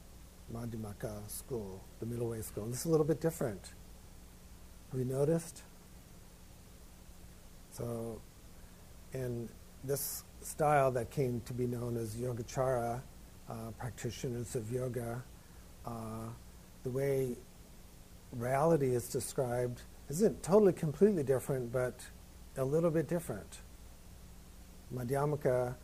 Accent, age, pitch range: American, 50-69, 90-130 Hz